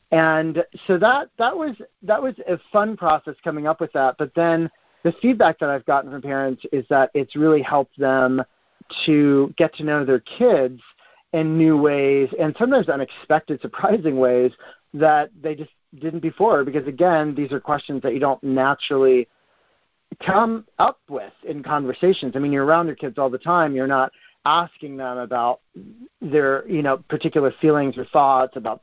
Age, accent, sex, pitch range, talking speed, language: 40-59, American, male, 130-165 Hz, 175 wpm, English